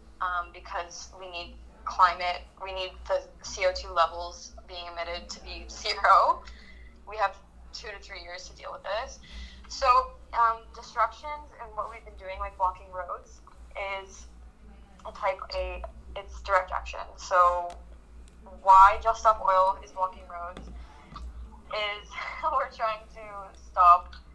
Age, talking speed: 10-29, 140 wpm